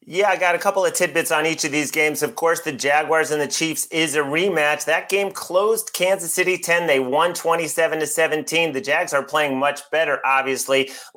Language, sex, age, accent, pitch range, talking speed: English, male, 30-49, American, 130-160 Hz, 215 wpm